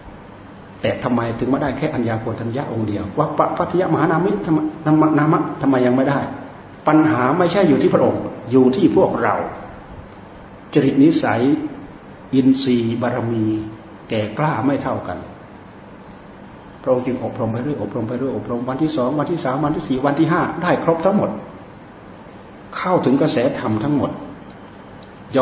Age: 60-79